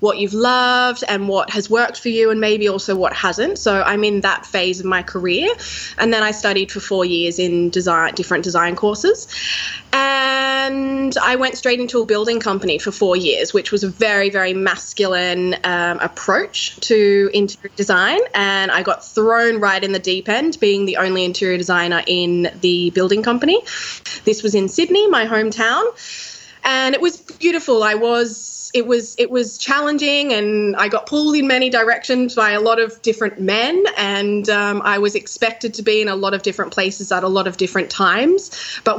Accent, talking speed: Australian, 190 wpm